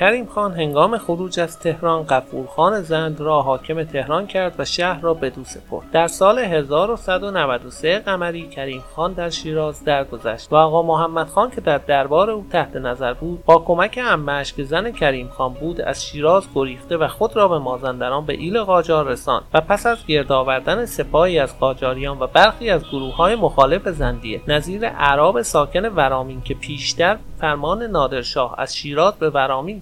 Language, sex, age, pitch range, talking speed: Persian, male, 30-49, 140-185 Hz, 170 wpm